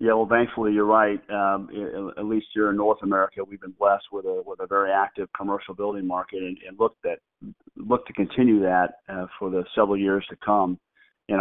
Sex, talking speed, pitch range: male, 210 wpm, 95-110 Hz